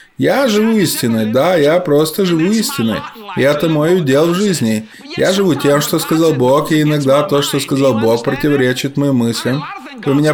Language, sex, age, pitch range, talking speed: Russian, male, 20-39, 135-190 Hz, 180 wpm